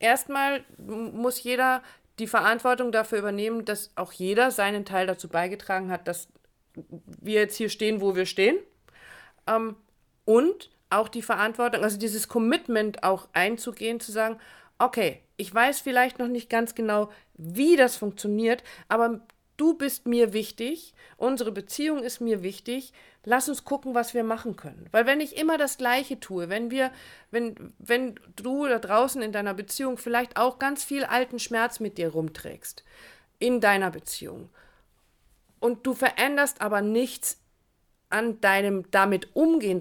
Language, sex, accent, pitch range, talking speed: German, female, German, 205-255 Hz, 150 wpm